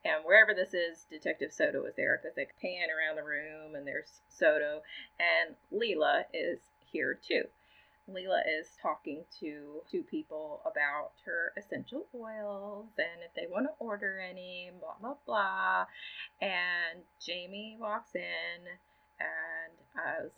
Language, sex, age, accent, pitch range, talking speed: English, female, 30-49, American, 165-280 Hz, 145 wpm